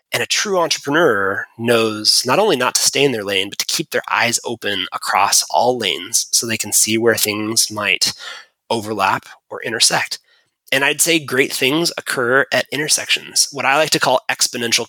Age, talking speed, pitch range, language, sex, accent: 20-39, 185 wpm, 115-150 Hz, English, male, American